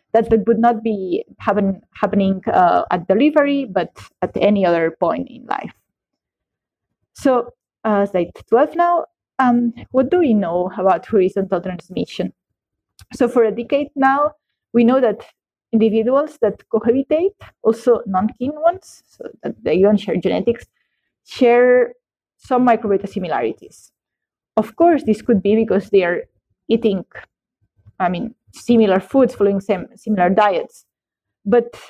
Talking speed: 135 wpm